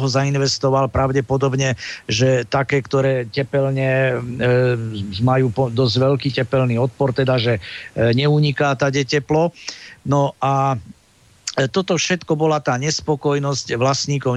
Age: 50-69